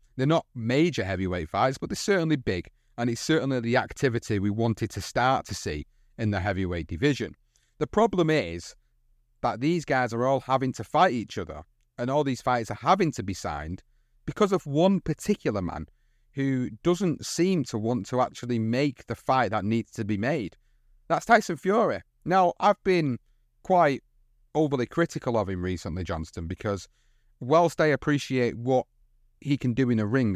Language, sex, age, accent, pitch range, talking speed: English, male, 30-49, British, 105-140 Hz, 180 wpm